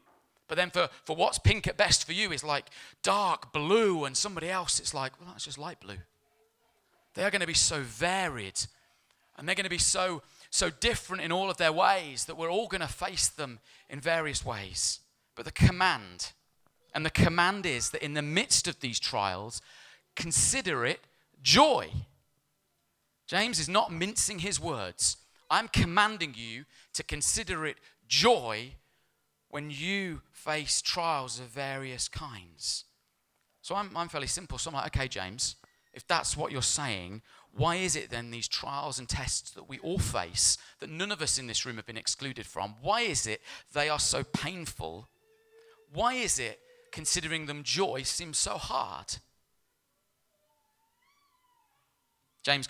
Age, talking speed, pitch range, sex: 30-49, 165 wpm, 120-185 Hz, male